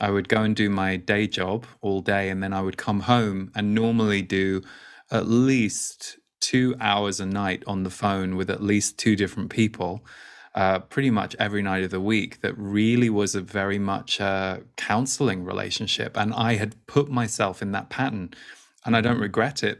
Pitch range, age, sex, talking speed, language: 100-115 Hz, 20-39, male, 195 wpm, English